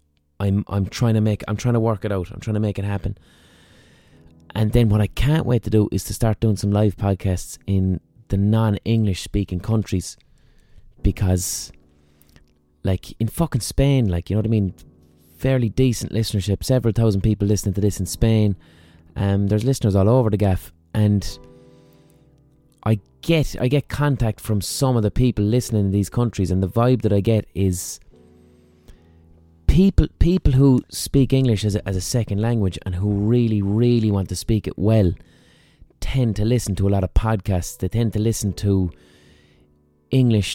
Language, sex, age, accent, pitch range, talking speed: English, male, 20-39, Irish, 90-115 Hz, 180 wpm